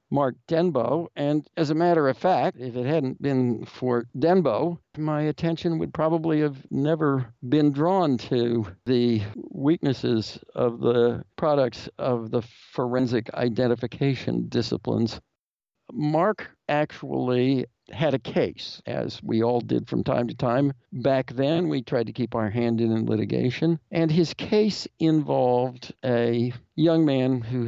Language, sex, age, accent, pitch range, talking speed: English, male, 60-79, American, 120-150 Hz, 140 wpm